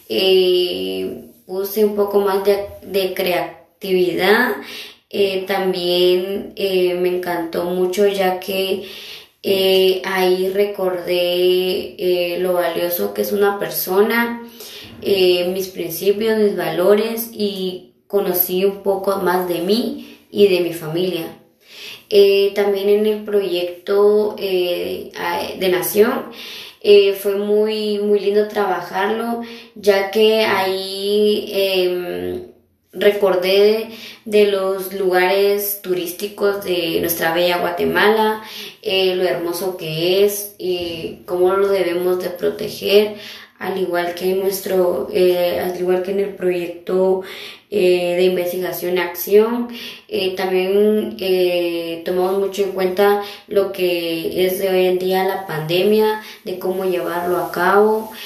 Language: Spanish